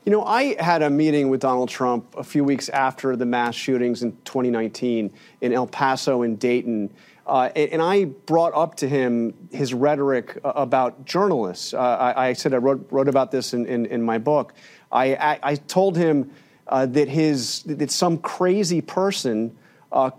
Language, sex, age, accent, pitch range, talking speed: English, male, 30-49, American, 130-170 Hz, 175 wpm